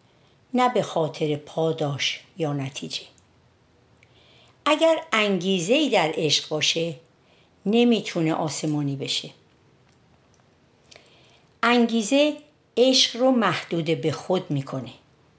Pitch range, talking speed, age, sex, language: 145-215 Hz, 80 wpm, 60-79, female, Persian